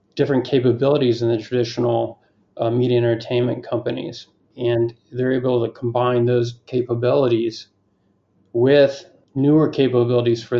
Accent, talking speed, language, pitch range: American, 115 wpm, English, 120-125 Hz